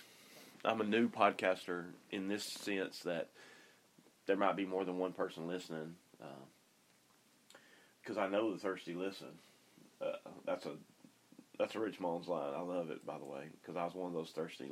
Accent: American